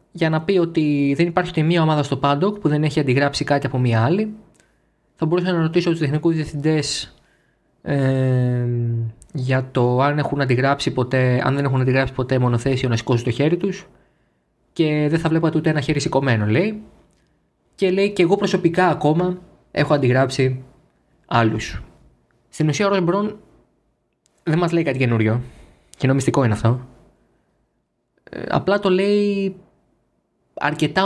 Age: 20-39